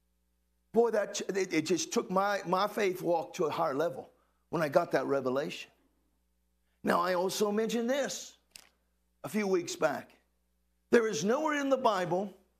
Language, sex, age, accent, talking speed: English, male, 50-69, American, 155 wpm